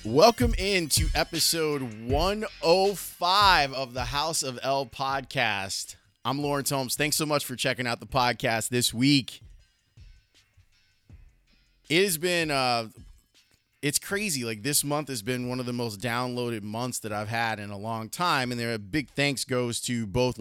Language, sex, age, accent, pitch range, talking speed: English, male, 30-49, American, 110-150 Hz, 165 wpm